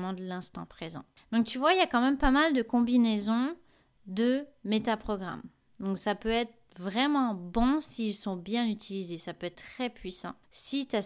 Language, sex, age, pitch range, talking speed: French, female, 20-39, 195-235 Hz, 190 wpm